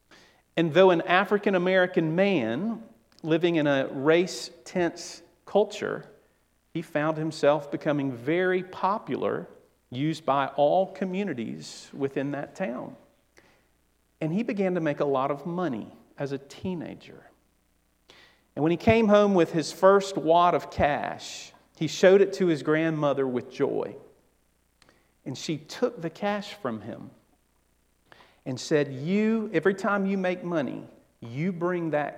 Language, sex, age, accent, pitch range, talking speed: English, male, 50-69, American, 140-185 Hz, 135 wpm